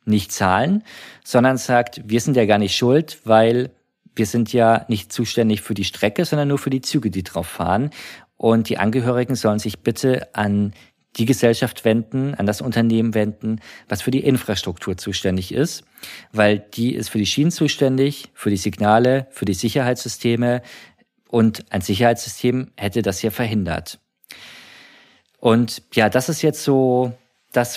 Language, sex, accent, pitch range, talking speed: German, male, German, 110-130 Hz, 160 wpm